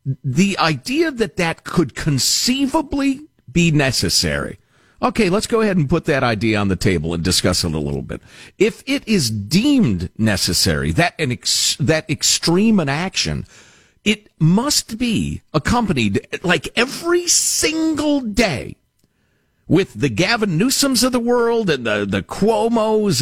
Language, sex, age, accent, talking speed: English, male, 50-69, American, 145 wpm